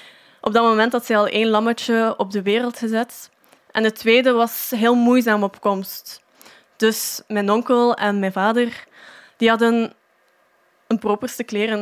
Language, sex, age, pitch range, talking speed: Dutch, female, 10-29, 210-245 Hz, 155 wpm